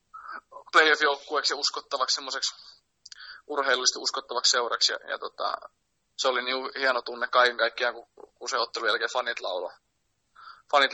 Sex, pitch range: male, 125-145 Hz